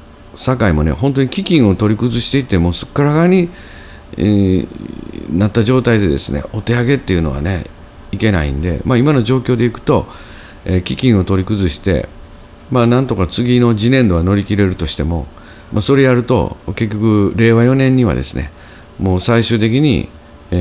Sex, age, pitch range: male, 50-69, 80-110 Hz